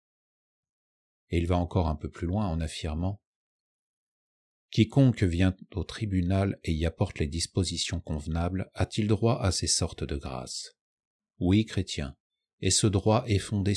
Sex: male